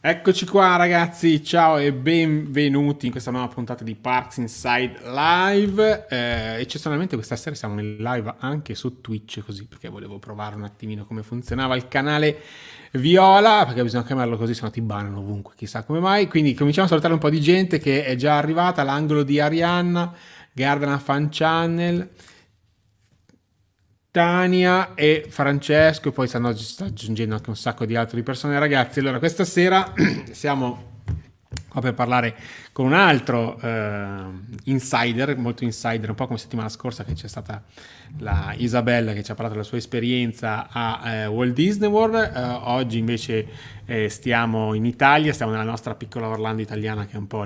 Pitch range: 110-150 Hz